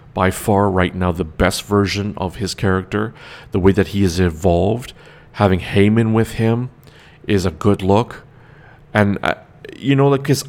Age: 40-59